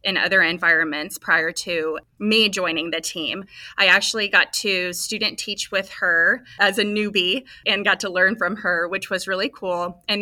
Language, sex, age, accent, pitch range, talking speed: English, female, 20-39, American, 170-200 Hz, 180 wpm